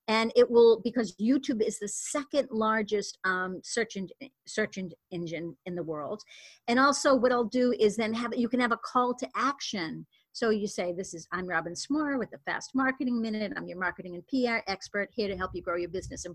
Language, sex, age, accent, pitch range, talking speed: English, female, 40-59, American, 185-255 Hz, 215 wpm